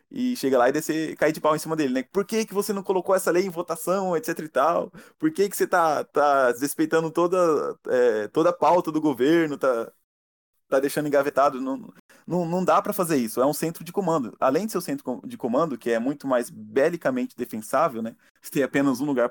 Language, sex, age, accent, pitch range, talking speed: Portuguese, male, 20-39, Brazilian, 135-190 Hz, 225 wpm